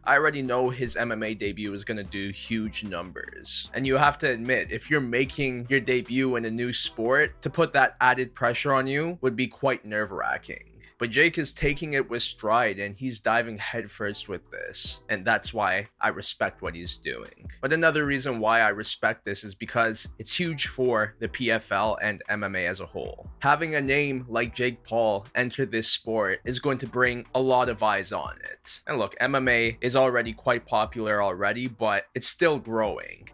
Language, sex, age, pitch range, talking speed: English, male, 20-39, 110-130 Hz, 195 wpm